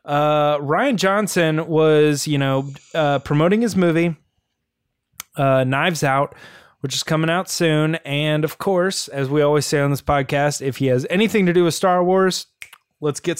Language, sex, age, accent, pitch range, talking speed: English, male, 20-39, American, 135-165 Hz, 175 wpm